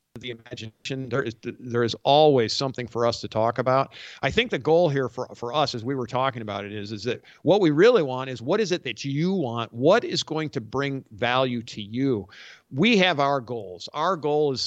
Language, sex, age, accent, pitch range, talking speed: English, male, 50-69, American, 115-145 Hz, 225 wpm